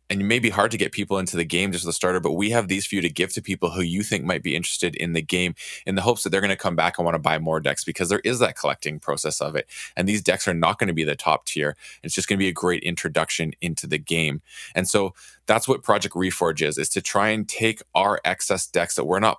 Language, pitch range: English, 90-110 Hz